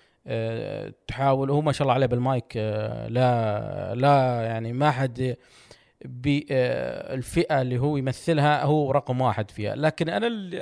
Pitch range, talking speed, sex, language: 115-150 Hz, 145 wpm, male, Arabic